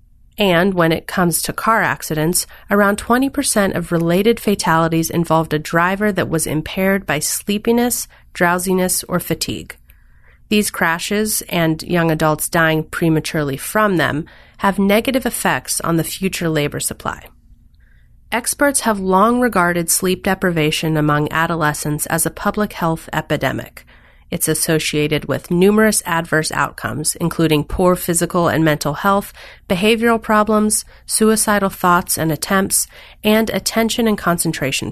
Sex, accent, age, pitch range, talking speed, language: female, American, 30-49, 155-210 Hz, 130 wpm, English